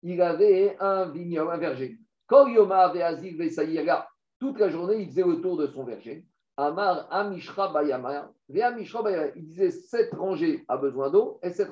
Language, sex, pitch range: French, male, 175-245 Hz